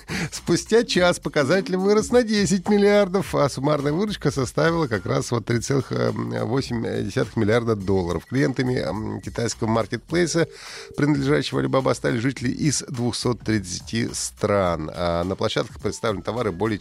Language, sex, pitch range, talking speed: Russian, male, 105-155 Hz, 120 wpm